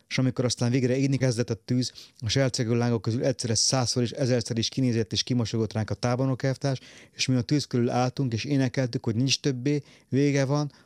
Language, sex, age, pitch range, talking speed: Hungarian, male, 30-49, 110-130 Hz, 200 wpm